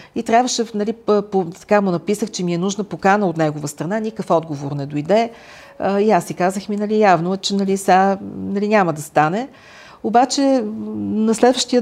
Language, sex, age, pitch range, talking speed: Bulgarian, female, 50-69, 160-215 Hz, 190 wpm